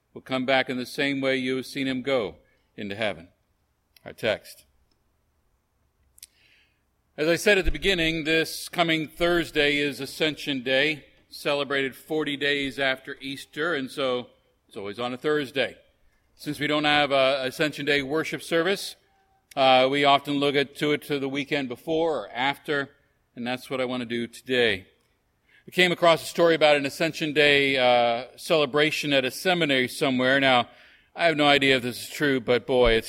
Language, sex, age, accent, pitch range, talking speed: English, male, 50-69, American, 130-155 Hz, 175 wpm